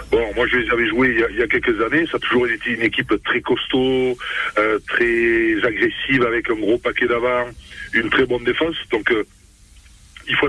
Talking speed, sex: 200 wpm, male